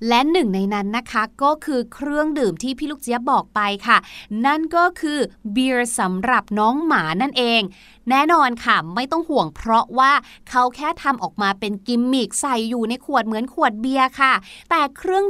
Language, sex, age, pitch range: Thai, female, 20-39, 235-315 Hz